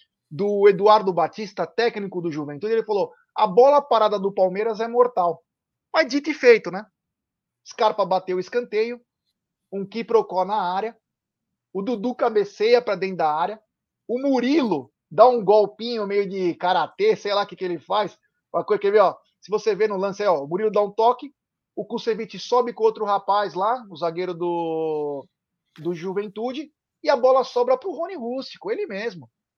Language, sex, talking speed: Portuguese, male, 175 wpm